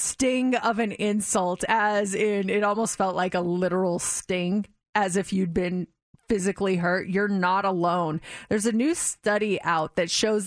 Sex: female